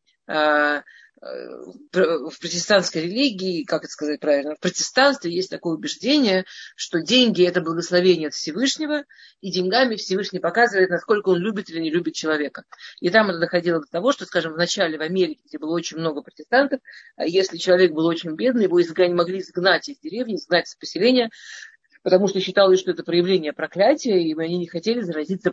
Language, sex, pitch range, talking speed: Russian, female, 170-220 Hz, 165 wpm